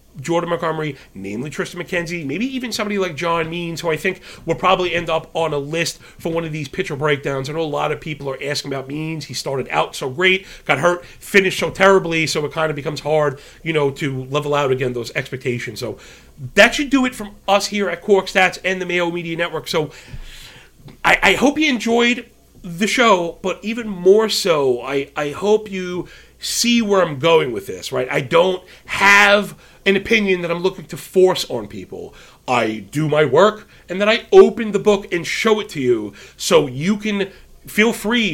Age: 40-59